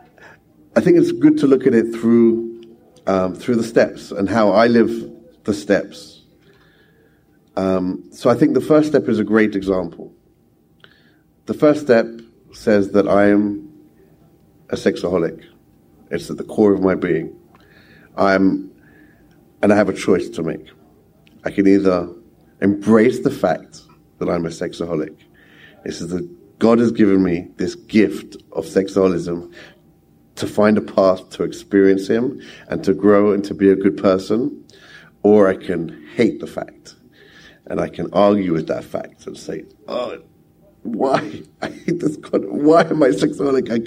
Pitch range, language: 95-115 Hz, English